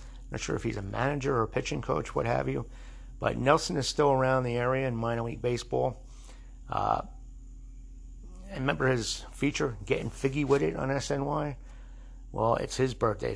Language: English